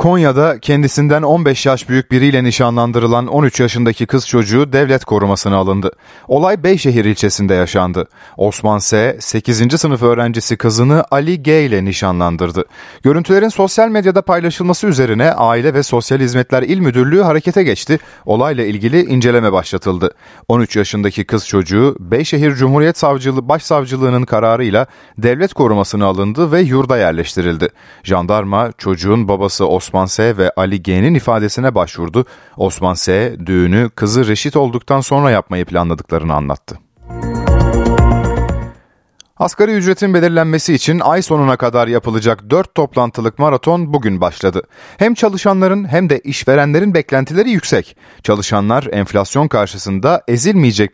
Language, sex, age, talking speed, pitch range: Turkish, male, 40-59, 125 wpm, 100-145 Hz